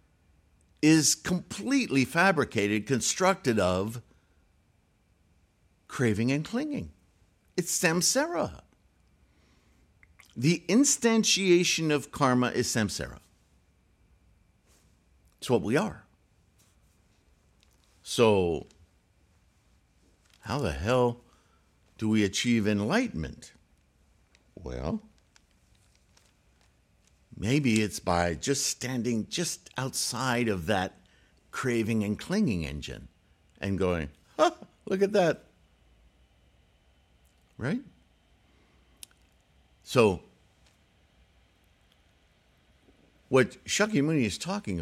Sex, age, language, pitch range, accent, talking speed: male, 60-79, English, 85-135 Hz, American, 70 wpm